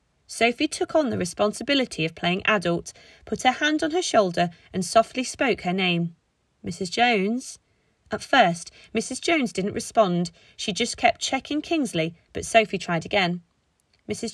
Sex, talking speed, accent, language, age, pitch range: female, 155 wpm, British, English, 30-49, 175-250 Hz